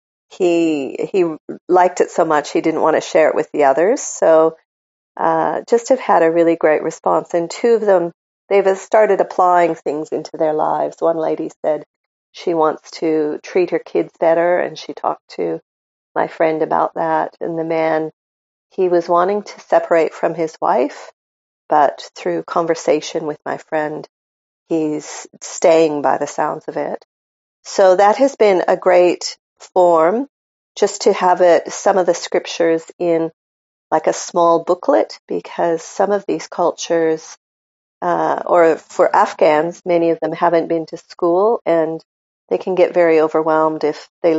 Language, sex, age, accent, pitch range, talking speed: English, female, 40-59, American, 155-180 Hz, 165 wpm